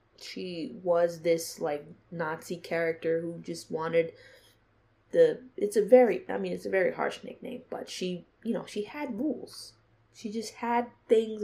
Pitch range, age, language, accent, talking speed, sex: 165-240 Hz, 20-39, English, American, 165 wpm, female